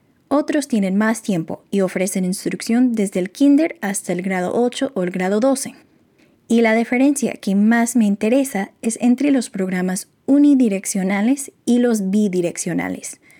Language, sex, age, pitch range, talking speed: Spanish, female, 20-39, 190-250 Hz, 150 wpm